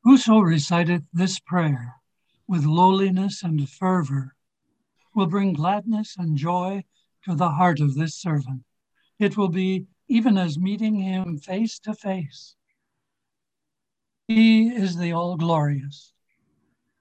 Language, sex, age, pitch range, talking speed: English, male, 60-79, 160-210 Hz, 115 wpm